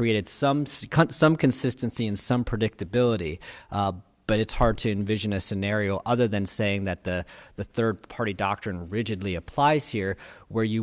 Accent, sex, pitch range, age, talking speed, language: American, male, 95-120 Hz, 40-59, 160 wpm, English